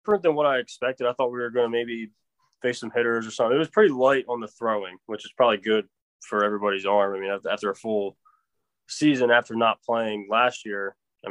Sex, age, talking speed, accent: male, 20-39, 225 wpm, American